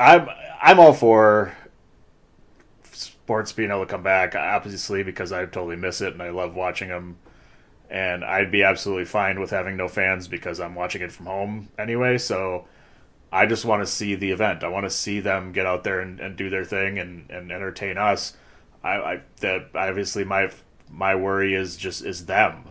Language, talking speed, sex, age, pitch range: English, 190 wpm, male, 30-49, 90-105 Hz